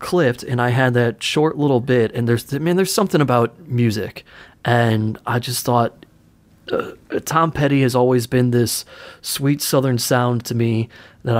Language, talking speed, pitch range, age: English, 175 wpm, 115-135 Hz, 30-49